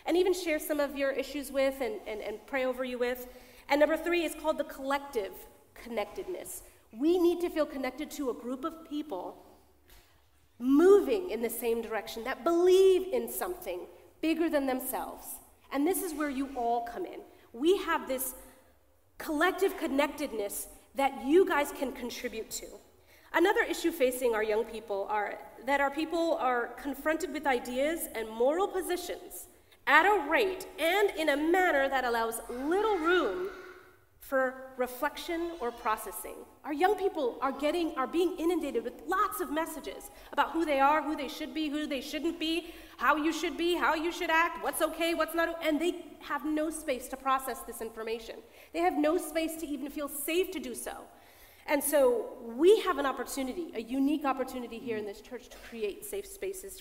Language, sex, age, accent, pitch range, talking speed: English, female, 30-49, American, 255-340 Hz, 180 wpm